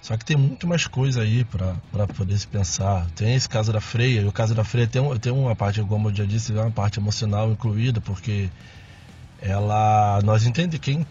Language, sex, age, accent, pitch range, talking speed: Portuguese, male, 20-39, Brazilian, 105-135 Hz, 210 wpm